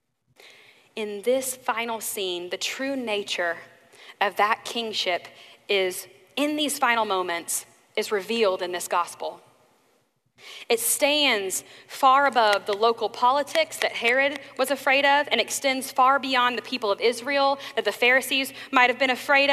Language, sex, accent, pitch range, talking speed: English, female, American, 225-290 Hz, 140 wpm